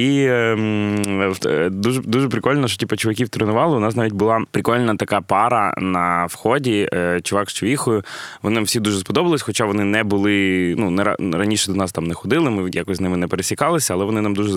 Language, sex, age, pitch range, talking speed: Ukrainian, male, 20-39, 90-110 Hz, 190 wpm